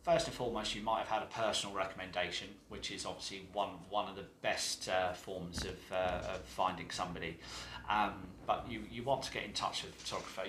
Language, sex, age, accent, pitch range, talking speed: English, male, 30-49, British, 95-110 Hz, 210 wpm